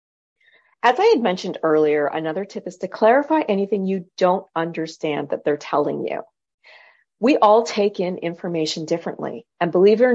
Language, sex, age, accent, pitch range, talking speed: English, female, 40-59, American, 160-210 Hz, 165 wpm